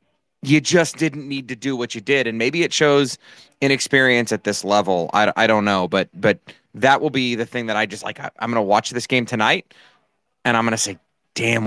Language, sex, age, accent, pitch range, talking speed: English, male, 30-49, American, 110-140 Hz, 235 wpm